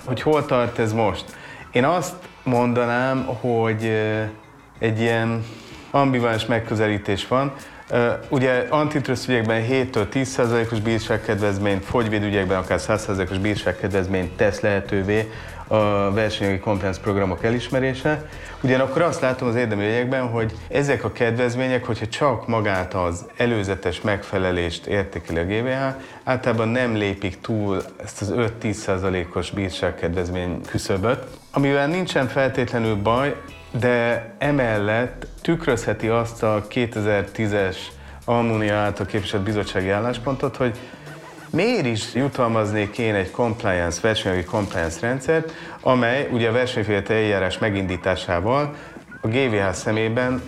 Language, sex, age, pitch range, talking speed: Hungarian, male, 30-49, 100-125 Hz, 105 wpm